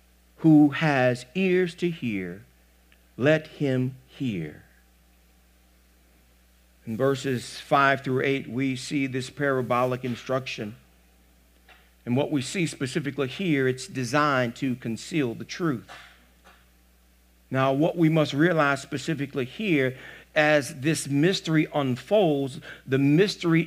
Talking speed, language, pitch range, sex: 110 wpm, English, 120-190 Hz, male